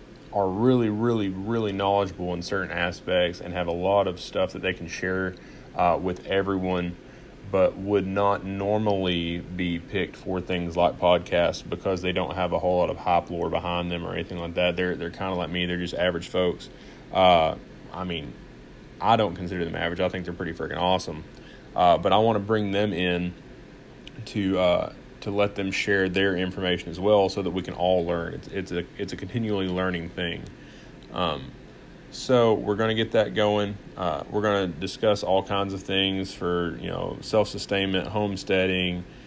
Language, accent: English, American